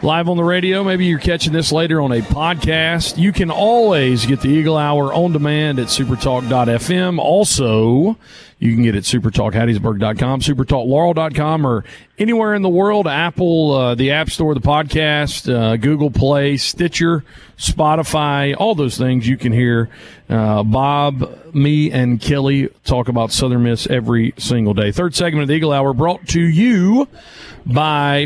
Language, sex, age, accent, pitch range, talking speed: English, male, 40-59, American, 130-170 Hz, 160 wpm